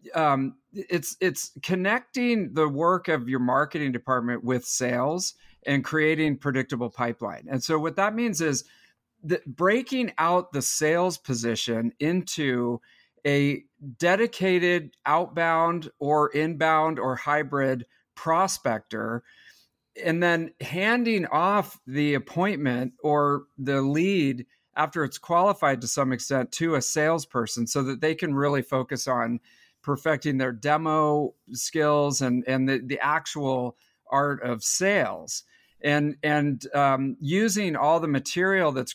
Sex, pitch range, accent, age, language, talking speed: male, 130-165 Hz, American, 50-69, English, 125 wpm